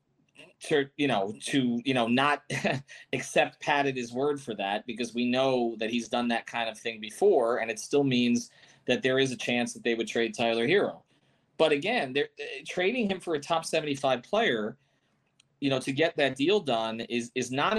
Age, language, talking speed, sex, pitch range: 30-49, English, 200 wpm, male, 130-195 Hz